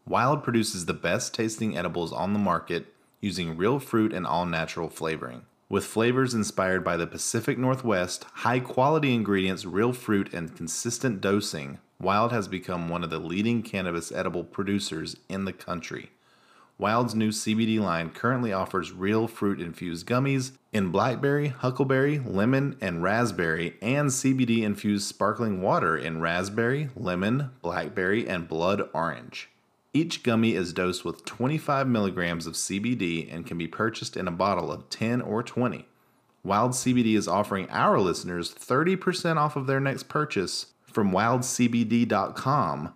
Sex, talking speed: male, 140 wpm